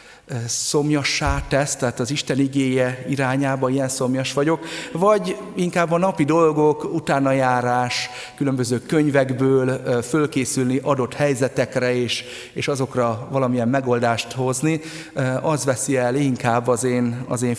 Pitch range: 120-140 Hz